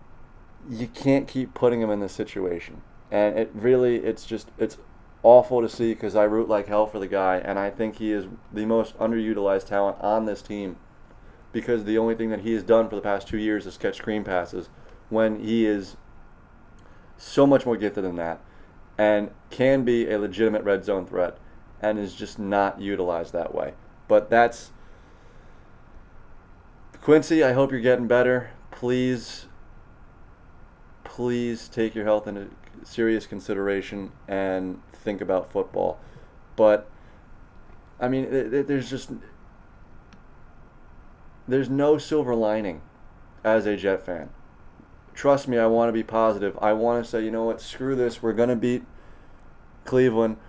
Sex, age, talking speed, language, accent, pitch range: male, 30-49, 155 wpm, English, American, 100-120 Hz